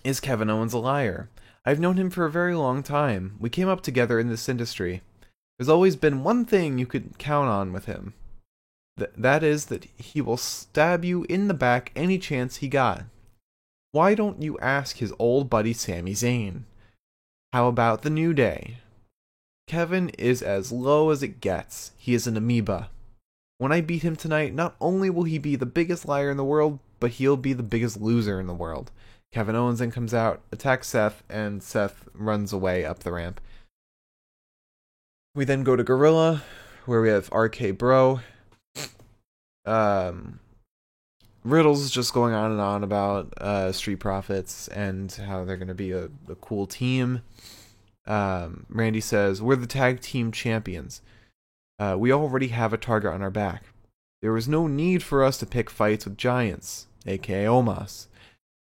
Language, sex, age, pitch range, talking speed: English, male, 20-39, 100-135 Hz, 175 wpm